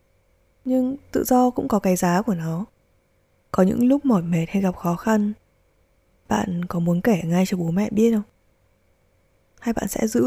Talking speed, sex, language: 185 wpm, female, Vietnamese